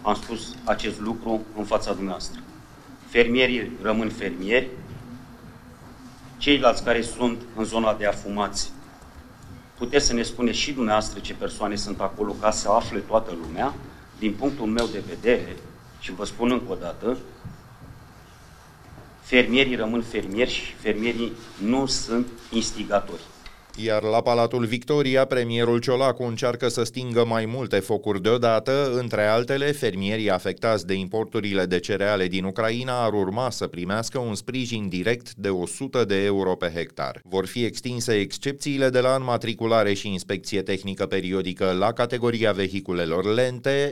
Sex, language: male, Romanian